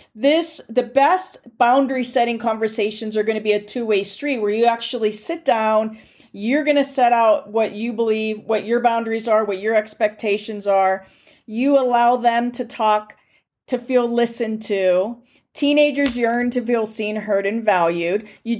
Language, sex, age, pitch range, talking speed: English, female, 40-59, 215-265 Hz, 170 wpm